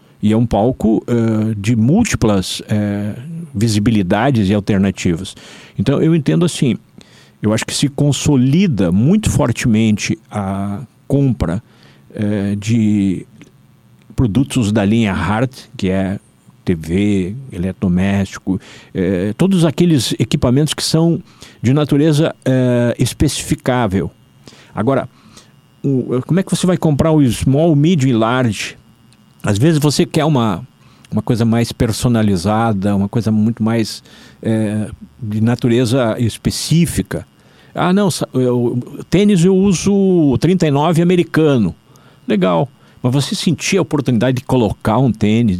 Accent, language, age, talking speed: Brazilian, Portuguese, 50-69, 115 wpm